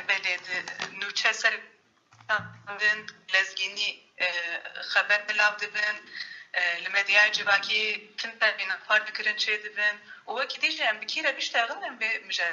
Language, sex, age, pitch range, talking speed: Turkish, female, 30-49, 180-240 Hz, 115 wpm